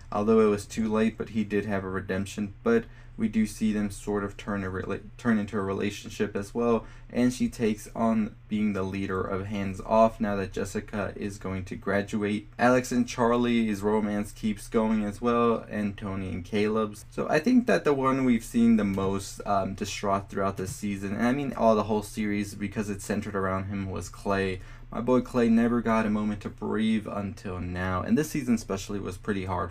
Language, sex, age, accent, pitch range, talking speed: English, male, 20-39, American, 100-115 Hz, 205 wpm